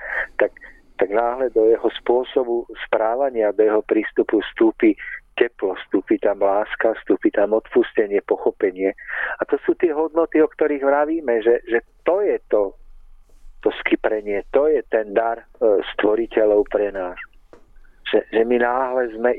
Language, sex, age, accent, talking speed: Czech, male, 50-69, native, 145 wpm